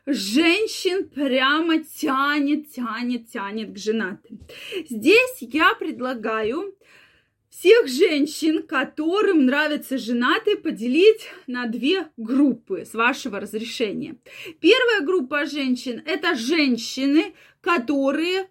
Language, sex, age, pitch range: Russian, female, 20-39, 255-350 Hz